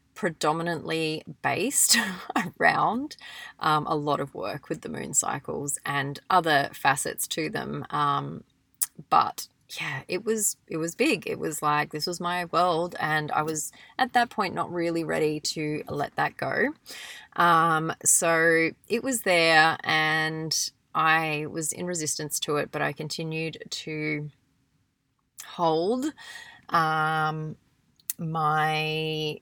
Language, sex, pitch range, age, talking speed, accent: English, female, 150-180 Hz, 30-49, 130 wpm, Australian